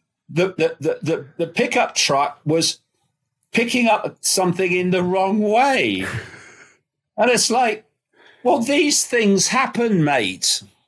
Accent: British